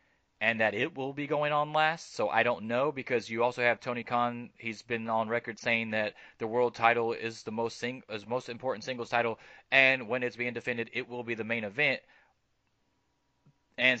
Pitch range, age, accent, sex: 110-135 Hz, 20-39, American, male